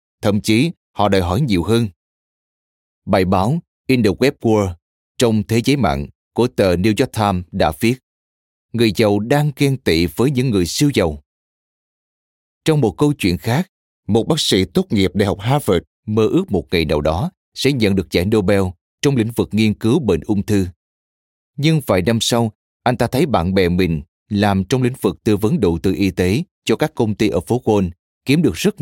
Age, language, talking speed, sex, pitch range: 20-39, Vietnamese, 200 wpm, male, 90-120 Hz